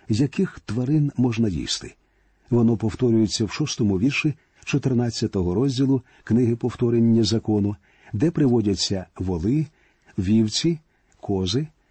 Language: Ukrainian